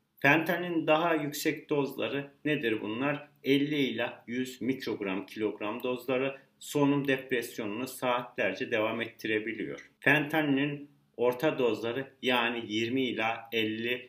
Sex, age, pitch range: male, 40-59, 125-145 Hz